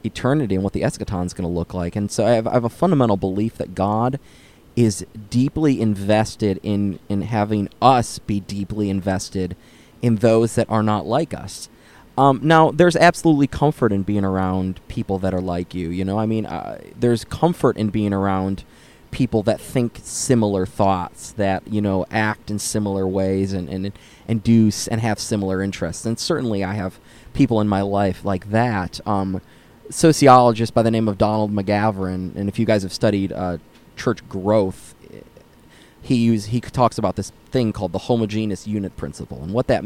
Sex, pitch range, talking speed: male, 95-120 Hz, 185 wpm